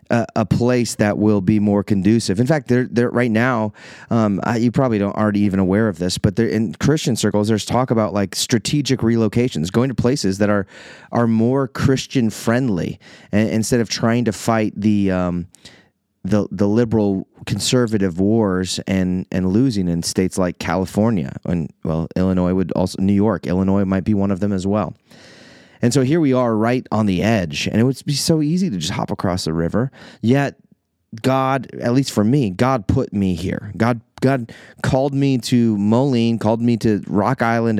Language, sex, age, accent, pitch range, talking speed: English, male, 30-49, American, 100-120 Hz, 190 wpm